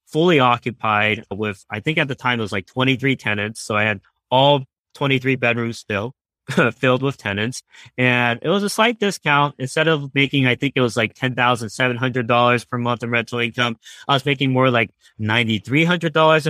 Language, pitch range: English, 105-135 Hz